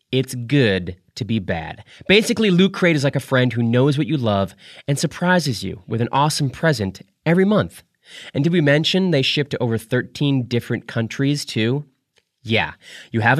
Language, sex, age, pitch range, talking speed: English, male, 30-49, 115-165 Hz, 185 wpm